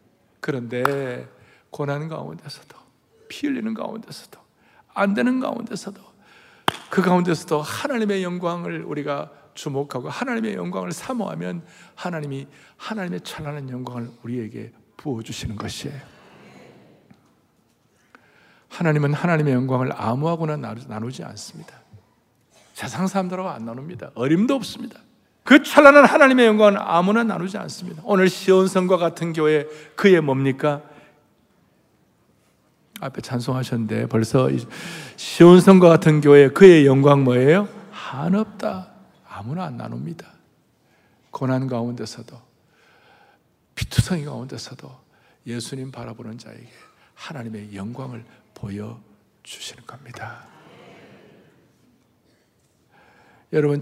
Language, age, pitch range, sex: Korean, 60-79, 120-185 Hz, male